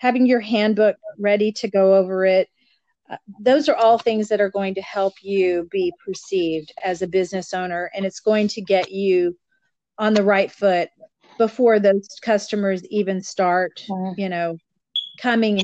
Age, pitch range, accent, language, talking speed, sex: 40-59, 185-225 Hz, American, English, 165 wpm, female